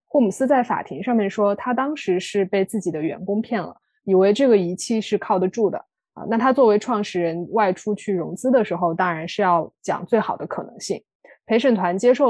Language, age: Chinese, 20-39